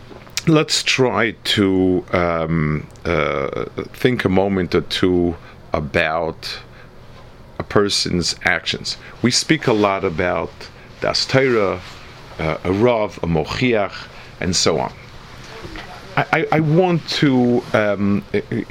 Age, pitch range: 50-69, 90-125 Hz